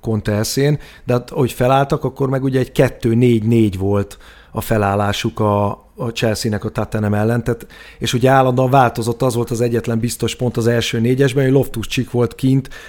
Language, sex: Hungarian, male